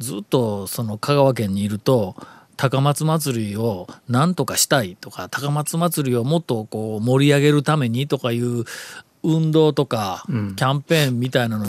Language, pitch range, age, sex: Japanese, 125-170 Hz, 40-59, male